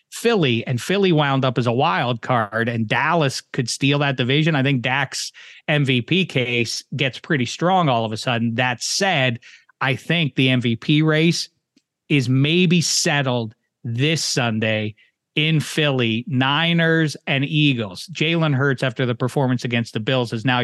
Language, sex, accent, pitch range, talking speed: English, male, American, 125-150 Hz, 155 wpm